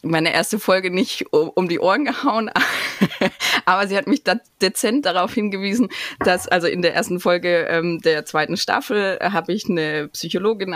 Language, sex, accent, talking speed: German, female, German, 165 wpm